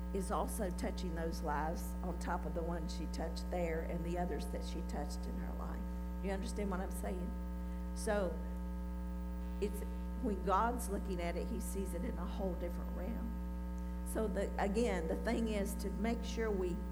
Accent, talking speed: American, 185 wpm